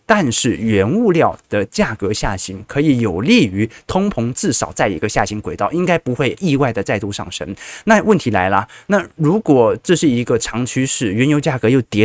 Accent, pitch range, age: native, 105-135 Hz, 20-39